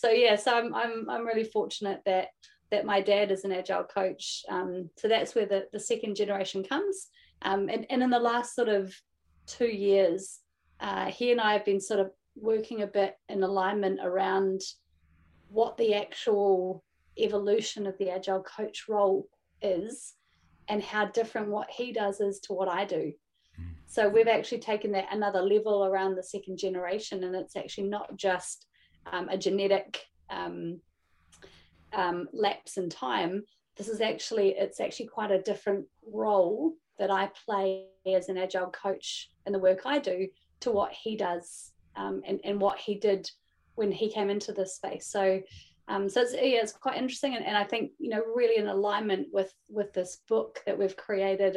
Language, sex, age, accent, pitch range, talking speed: English, female, 30-49, Australian, 190-215 Hz, 180 wpm